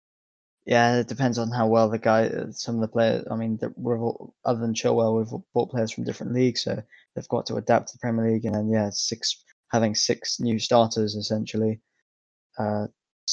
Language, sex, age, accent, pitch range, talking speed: English, male, 20-39, British, 110-120 Hz, 205 wpm